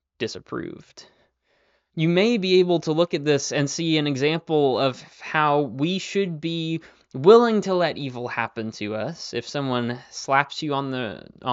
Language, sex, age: English, male, 20-39